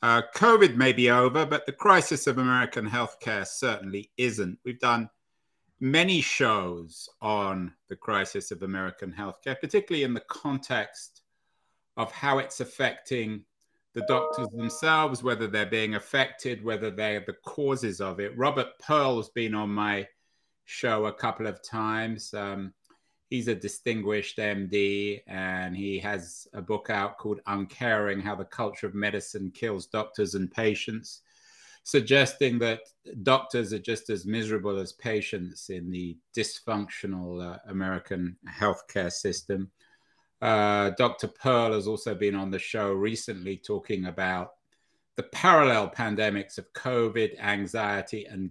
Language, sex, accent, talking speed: English, male, British, 135 wpm